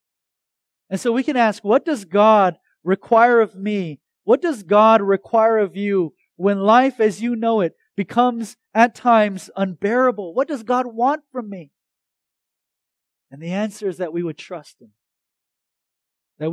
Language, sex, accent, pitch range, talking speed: English, male, American, 160-210 Hz, 155 wpm